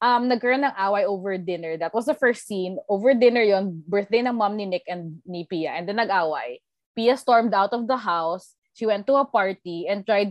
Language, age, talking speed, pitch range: Filipino, 20-39, 220 wpm, 185-285 Hz